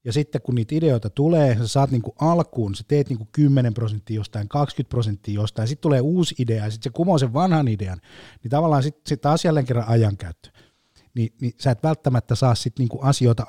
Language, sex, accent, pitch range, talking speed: Finnish, male, native, 110-145 Hz, 210 wpm